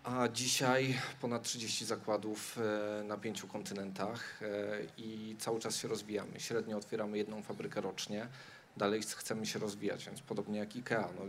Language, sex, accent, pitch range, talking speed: Polish, male, native, 105-120 Hz, 145 wpm